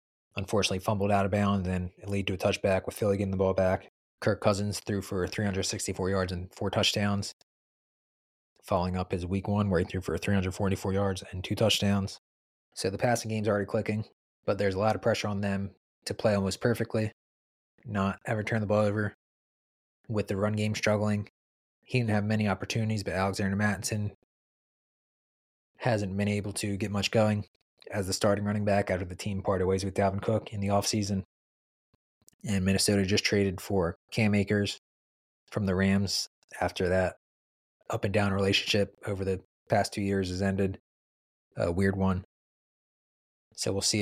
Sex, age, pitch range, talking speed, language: male, 20-39, 95-105 Hz, 175 wpm, English